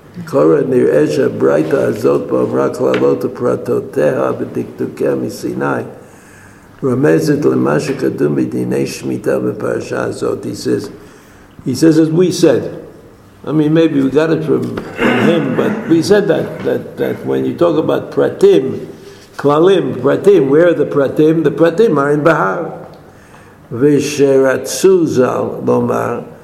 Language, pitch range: English, 130-180 Hz